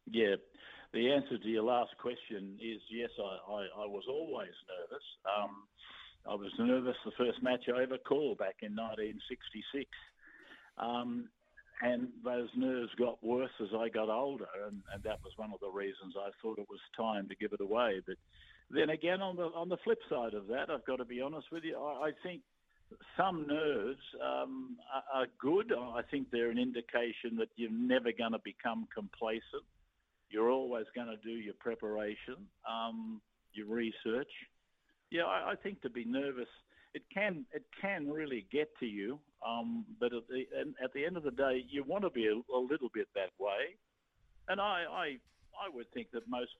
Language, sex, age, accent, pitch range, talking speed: English, male, 50-69, Australian, 110-140 Hz, 190 wpm